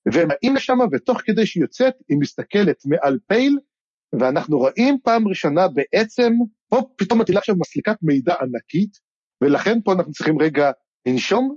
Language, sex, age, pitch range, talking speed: Hebrew, male, 50-69, 165-245 Hz, 145 wpm